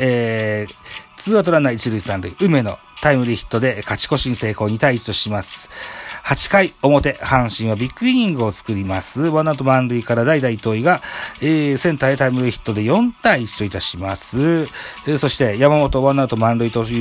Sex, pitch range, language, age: male, 105-145 Hz, Japanese, 40-59